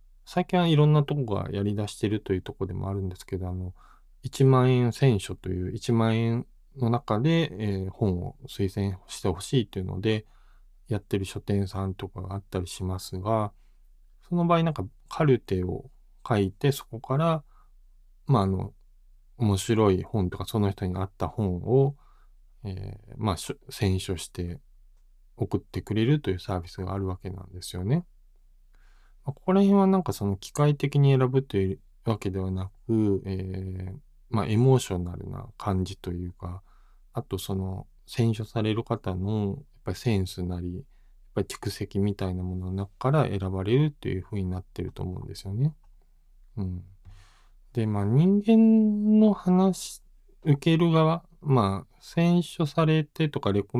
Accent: native